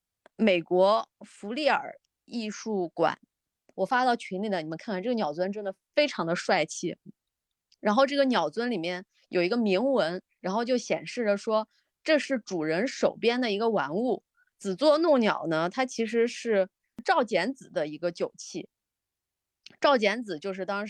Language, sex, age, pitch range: Chinese, female, 20-39, 195-270 Hz